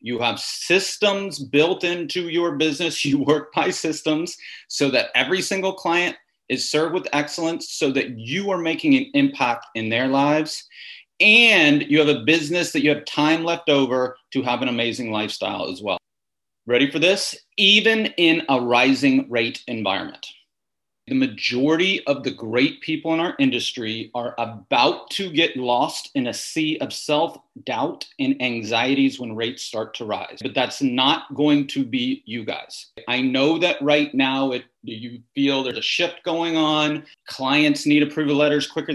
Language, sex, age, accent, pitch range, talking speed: English, male, 30-49, American, 135-170 Hz, 170 wpm